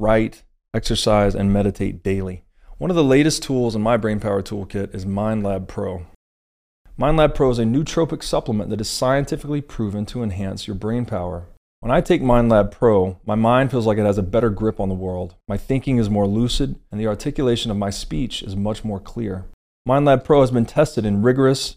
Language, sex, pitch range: English, male, 95-120 Hz